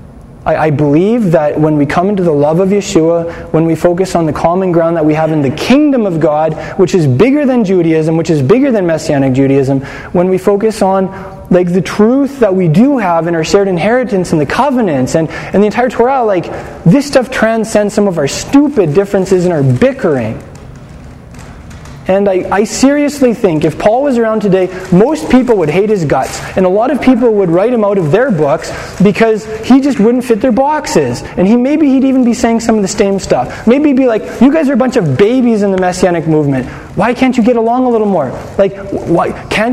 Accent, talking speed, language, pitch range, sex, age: American, 220 wpm, English, 175-240 Hz, male, 20-39